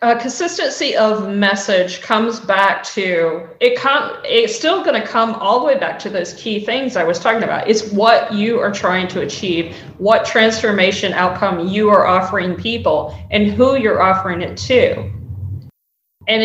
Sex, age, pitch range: female, 40-59, 185-235 Hz